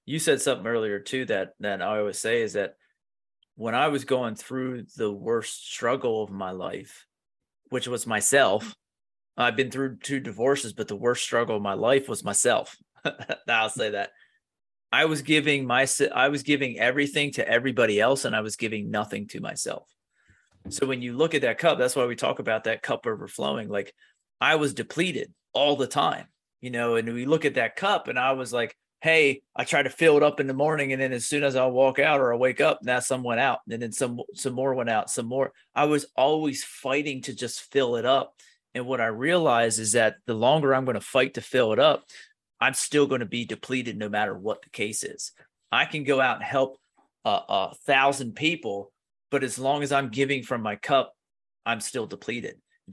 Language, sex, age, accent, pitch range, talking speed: English, male, 30-49, American, 120-145 Hz, 215 wpm